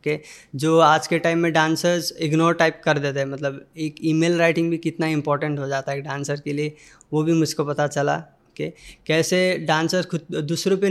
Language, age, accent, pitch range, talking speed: English, 20-39, Indian, 155-175 Hz, 205 wpm